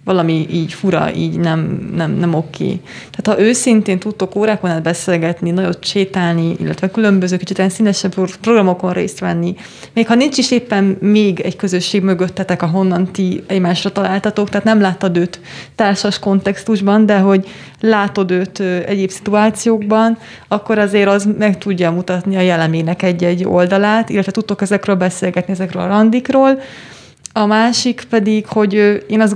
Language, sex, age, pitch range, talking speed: Hungarian, female, 30-49, 180-215 Hz, 145 wpm